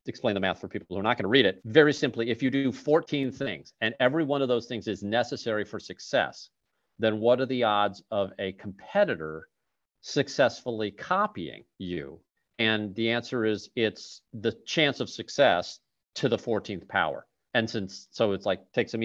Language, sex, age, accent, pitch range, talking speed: English, male, 40-59, American, 100-130 Hz, 190 wpm